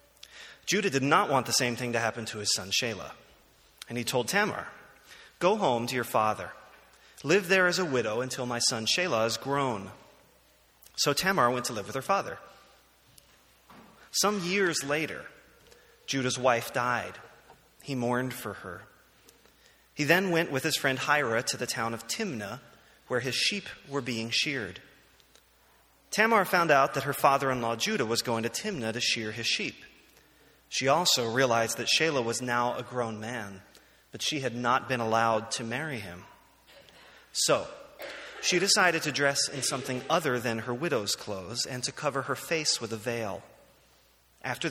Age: 30-49